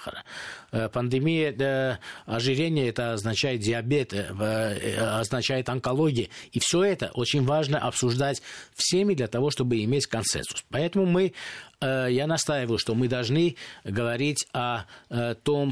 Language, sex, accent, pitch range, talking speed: Russian, male, native, 115-135 Hz, 105 wpm